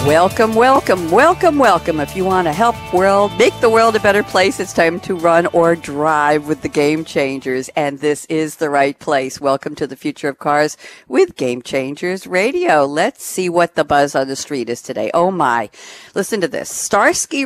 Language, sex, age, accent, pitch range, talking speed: English, female, 60-79, American, 140-185 Hz, 200 wpm